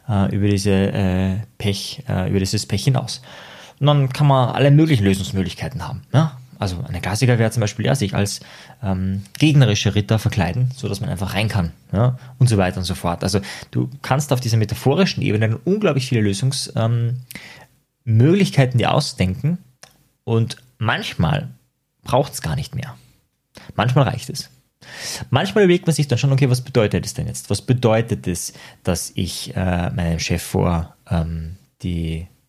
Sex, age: male, 20-39